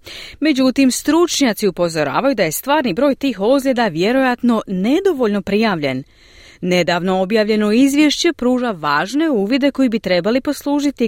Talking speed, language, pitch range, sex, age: 120 wpm, Croatian, 185-275 Hz, female, 30-49